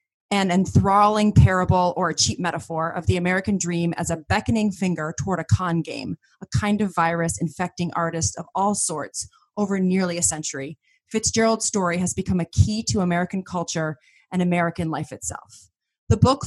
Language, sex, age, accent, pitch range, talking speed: English, female, 30-49, American, 165-200 Hz, 170 wpm